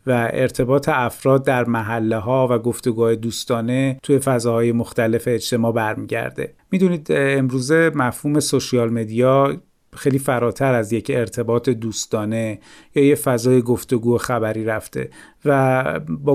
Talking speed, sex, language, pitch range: 120 wpm, male, Persian, 120-140 Hz